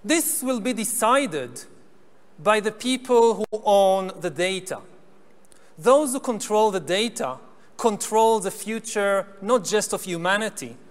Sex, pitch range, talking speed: male, 200-245 Hz, 125 wpm